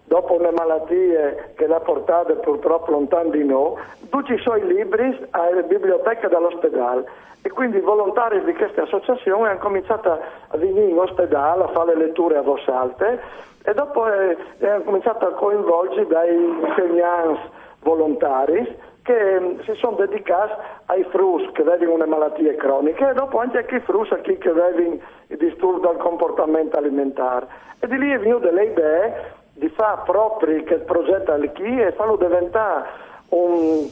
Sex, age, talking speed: male, 50-69, 150 wpm